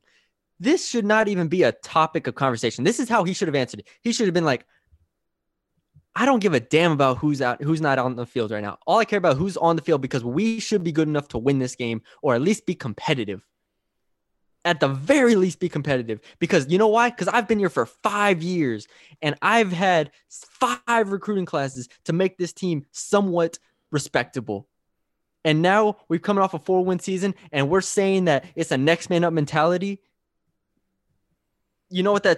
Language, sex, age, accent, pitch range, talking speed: English, male, 20-39, American, 140-195 Hz, 205 wpm